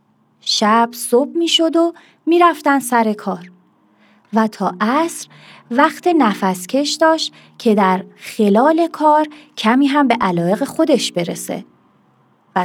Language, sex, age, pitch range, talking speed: Persian, female, 30-49, 195-280 Hz, 125 wpm